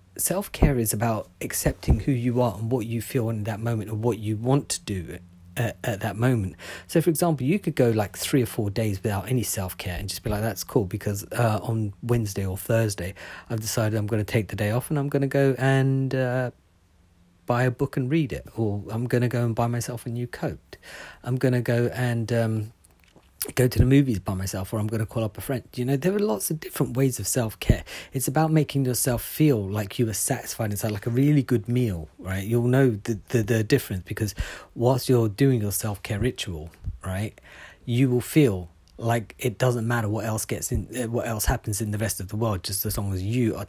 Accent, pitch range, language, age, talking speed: British, 105-125 Hz, English, 40-59, 230 wpm